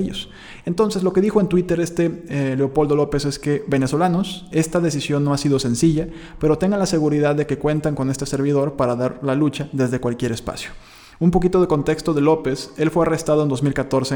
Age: 20-39